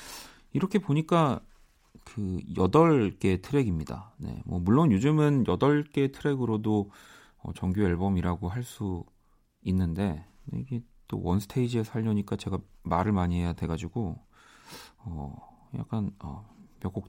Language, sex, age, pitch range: Korean, male, 40-59, 90-120 Hz